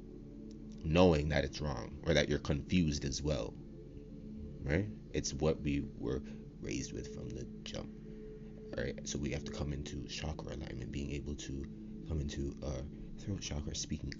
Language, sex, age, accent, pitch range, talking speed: English, male, 30-49, American, 70-100 Hz, 170 wpm